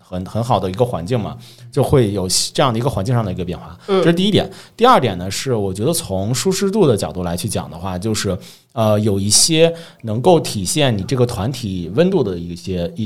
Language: Chinese